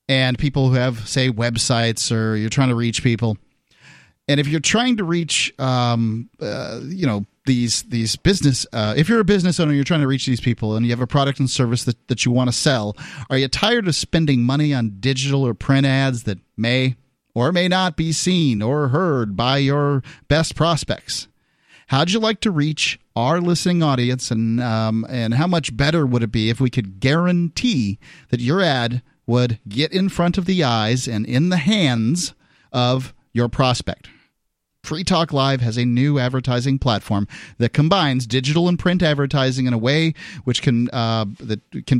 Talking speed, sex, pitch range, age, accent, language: 190 wpm, male, 120-150 Hz, 40-59, American, English